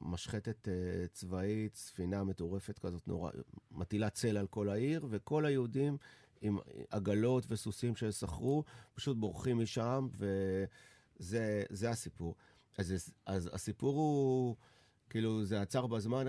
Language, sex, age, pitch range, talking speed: English, male, 40-59, 95-125 Hz, 110 wpm